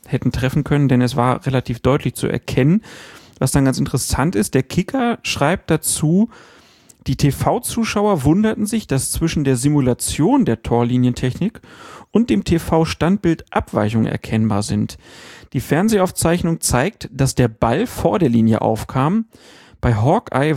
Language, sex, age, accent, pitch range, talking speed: German, male, 40-59, German, 125-165 Hz, 135 wpm